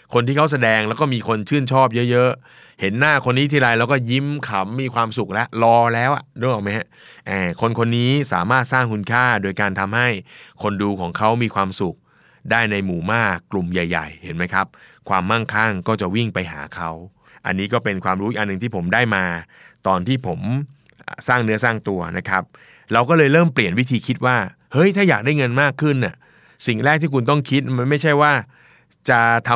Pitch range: 105-135 Hz